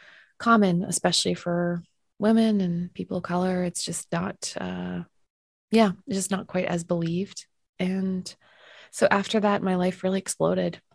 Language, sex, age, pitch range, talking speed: English, female, 20-39, 175-195 Hz, 150 wpm